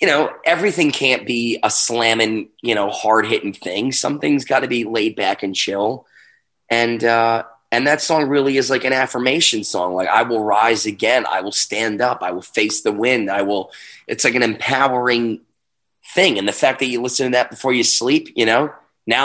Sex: male